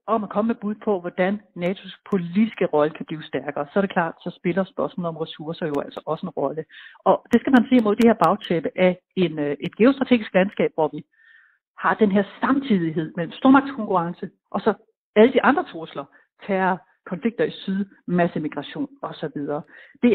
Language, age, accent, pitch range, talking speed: Danish, 60-79, native, 165-230 Hz, 185 wpm